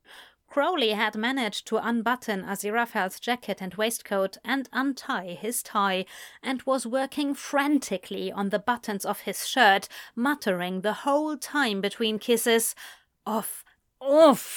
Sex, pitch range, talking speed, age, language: female, 195-250 Hz, 130 wpm, 30-49, English